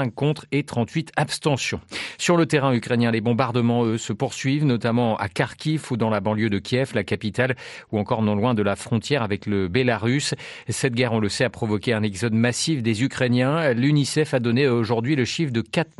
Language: French